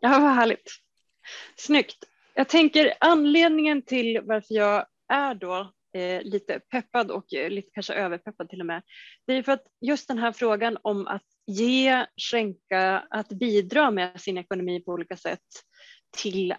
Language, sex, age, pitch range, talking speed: Swedish, female, 30-49, 185-245 Hz, 160 wpm